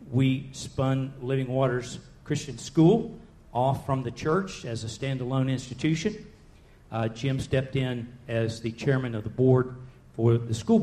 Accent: American